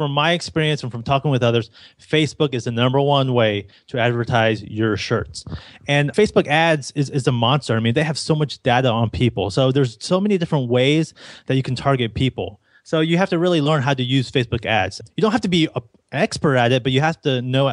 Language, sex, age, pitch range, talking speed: English, male, 30-49, 120-155 Hz, 235 wpm